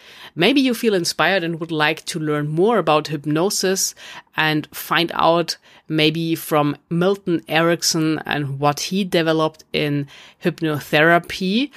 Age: 30-49